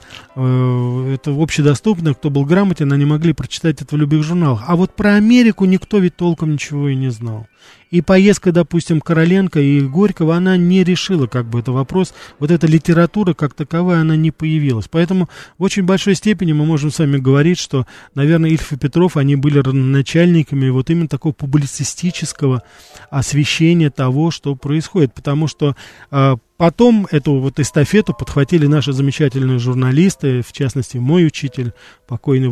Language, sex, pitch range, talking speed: Russian, male, 130-170 Hz, 155 wpm